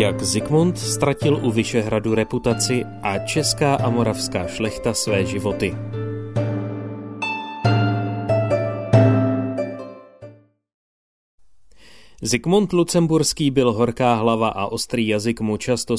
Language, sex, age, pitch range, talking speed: Czech, male, 30-49, 105-130 Hz, 85 wpm